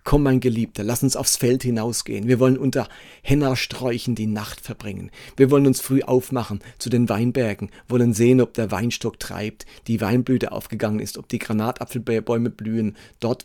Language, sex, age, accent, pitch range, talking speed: German, male, 40-59, German, 120-140 Hz, 170 wpm